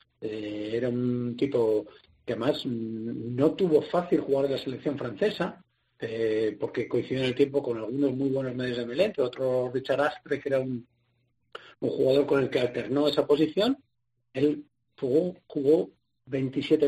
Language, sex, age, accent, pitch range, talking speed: Spanish, male, 40-59, Spanish, 120-150 Hz, 160 wpm